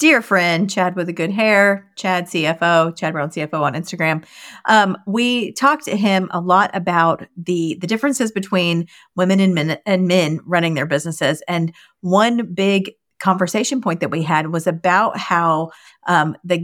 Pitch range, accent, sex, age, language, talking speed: 165-205 Hz, American, female, 40-59, English, 170 wpm